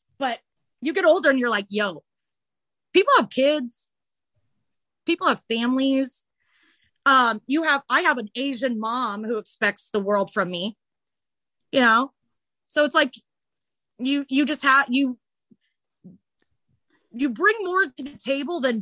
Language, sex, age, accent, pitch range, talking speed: English, female, 30-49, American, 235-300 Hz, 145 wpm